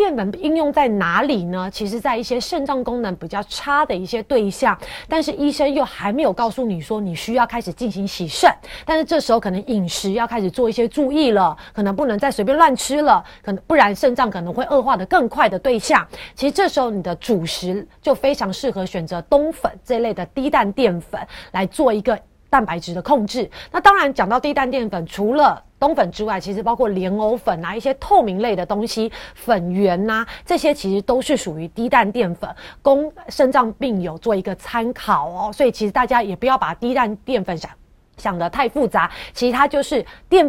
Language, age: Chinese, 30-49